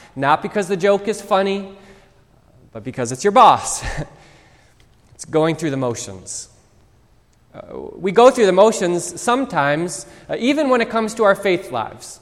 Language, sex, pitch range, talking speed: English, male, 135-195 Hz, 155 wpm